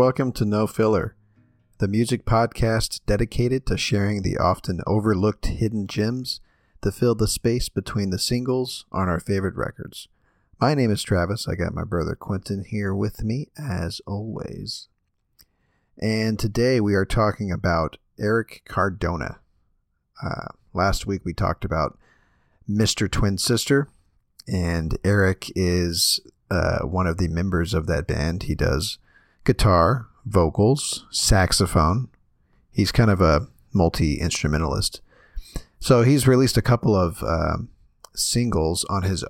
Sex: male